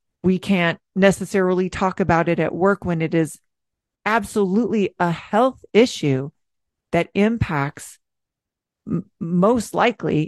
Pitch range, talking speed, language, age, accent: 170-215 Hz, 110 wpm, English, 40-59, American